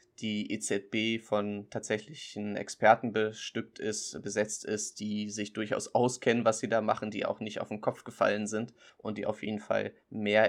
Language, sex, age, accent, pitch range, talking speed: German, male, 20-39, German, 105-120 Hz, 175 wpm